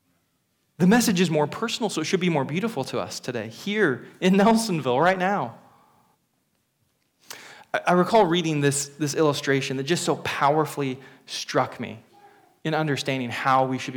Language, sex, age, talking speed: English, male, 20-39, 155 wpm